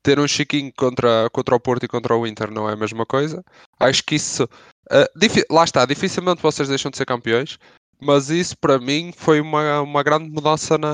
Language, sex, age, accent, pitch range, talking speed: English, male, 20-39, Brazilian, 115-150 Hz, 210 wpm